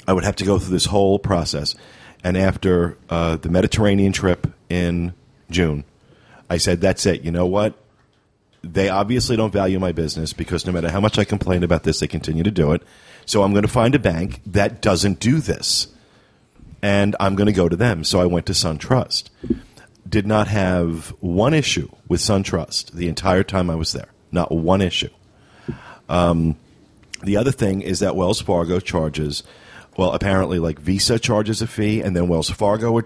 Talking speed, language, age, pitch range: 190 wpm, English, 40-59, 85-105 Hz